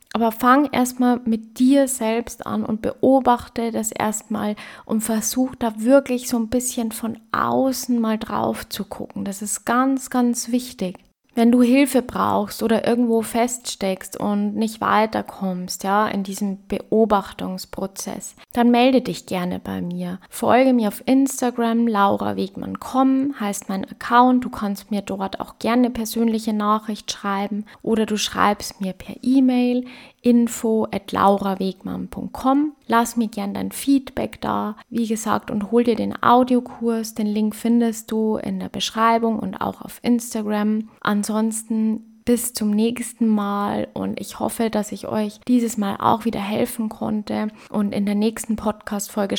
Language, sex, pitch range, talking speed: German, female, 205-240 Hz, 145 wpm